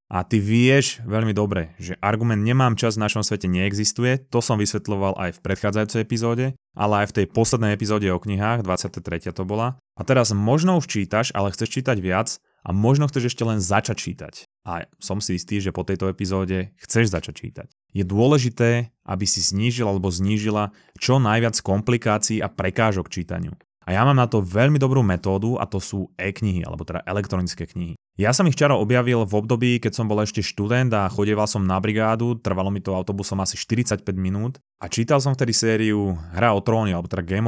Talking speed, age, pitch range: 195 wpm, 20-39, 100-120 Hz